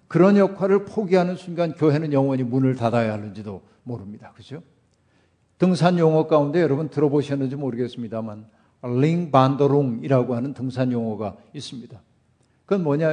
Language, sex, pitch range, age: Korean, male, 125-170 Hz, 50-69